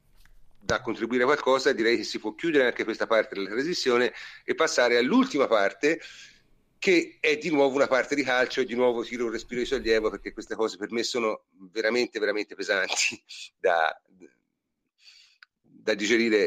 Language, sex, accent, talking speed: Italian, male, native, 170 wpm